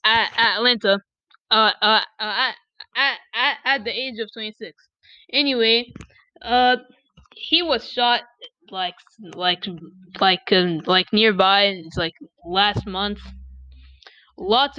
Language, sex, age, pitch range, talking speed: English, female, 10-29, 205-265 Hz, 115 wpm